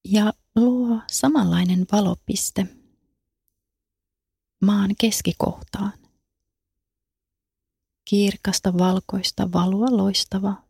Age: 30-49